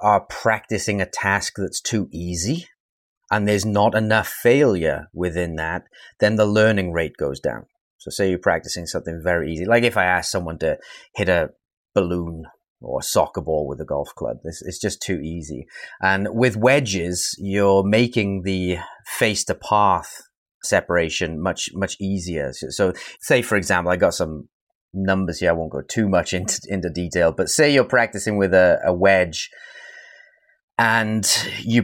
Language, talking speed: English, 160 wpm